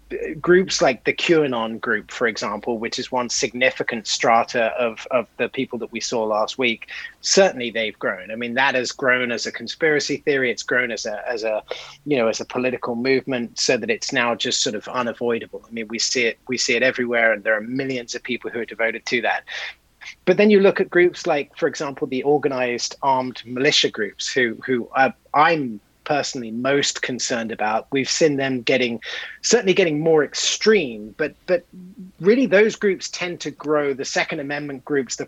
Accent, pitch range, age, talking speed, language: British, 125-150 Hz, 30-49, 195 wpm, English